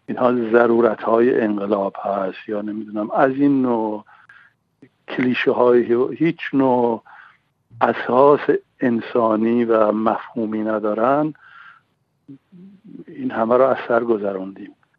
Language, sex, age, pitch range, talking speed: Persian, male, 60-79, 110-140 Hz, 105 wpm